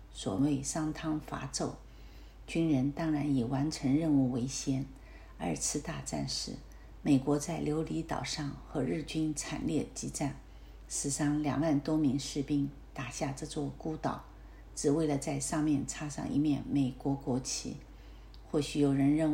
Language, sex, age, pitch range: Chinese, female, 50-69, 135-155 Hz